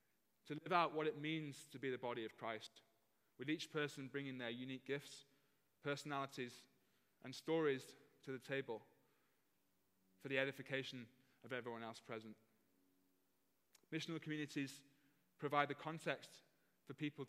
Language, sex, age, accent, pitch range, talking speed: English, male, 20-39, British, 115-155 Hz, 135 wpm